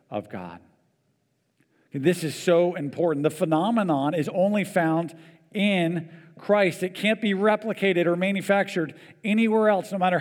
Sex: male